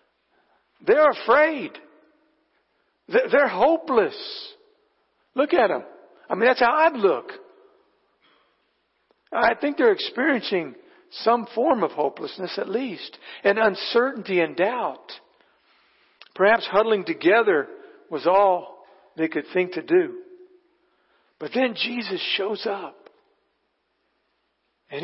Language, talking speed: English, 105 wpm